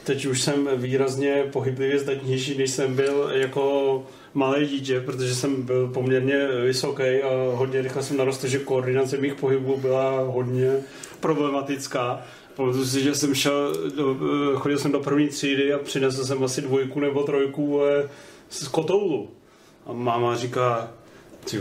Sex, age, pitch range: male, 30-49, 135-160 Hz